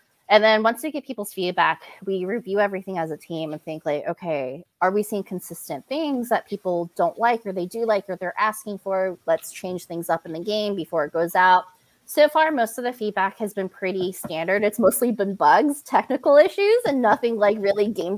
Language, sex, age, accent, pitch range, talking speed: English, female, 20-39, American, 180-225 Hz, 220 wpm